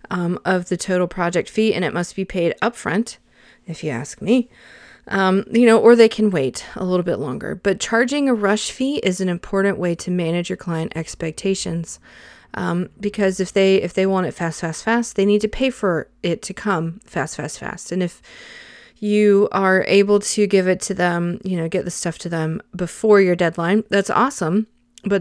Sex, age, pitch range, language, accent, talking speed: female, 30-49, 175-210 Hz, English, American, 205 wpm